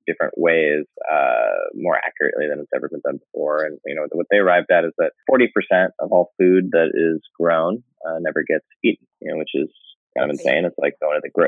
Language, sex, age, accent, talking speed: English, male, 20-39, American, 220 wpm